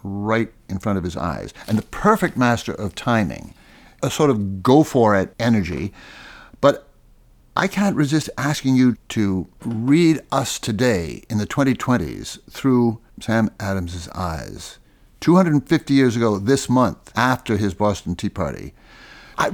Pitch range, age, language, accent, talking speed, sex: 110-150 Hz, 60-79, English, American, 140 wpm, male